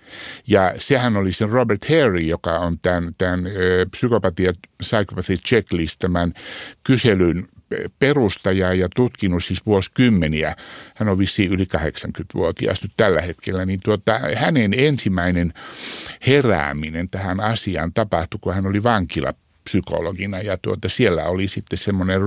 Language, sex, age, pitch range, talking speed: Finnish, male, 60-79, 90-105 Hz, 120 wpm